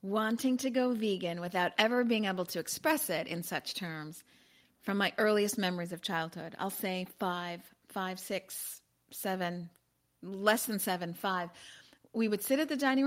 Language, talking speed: English, 165 wpm